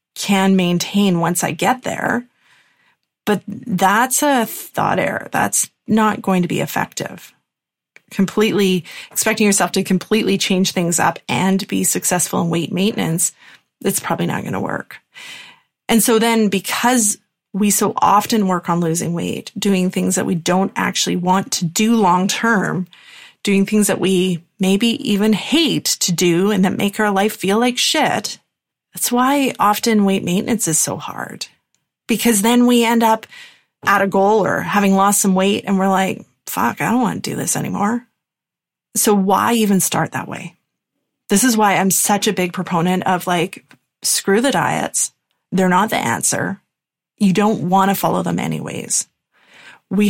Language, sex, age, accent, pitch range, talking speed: English, female, 30-49, American, 185-220 Hz, 165 wpm